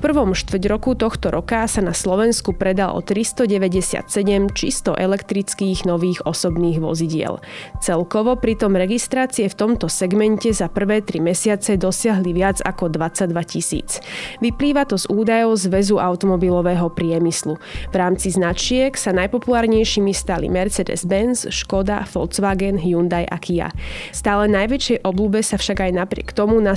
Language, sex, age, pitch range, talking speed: Slovak, female, 20-39, 180-225 Hz, 135 wpm